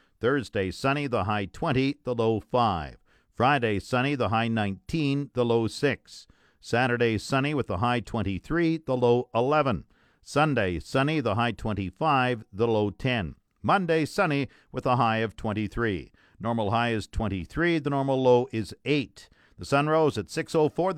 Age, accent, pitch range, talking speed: 50-69, American, 115-150 Hz, 155 wpm